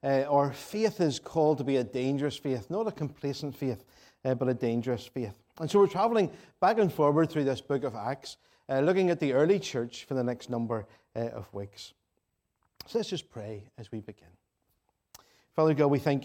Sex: male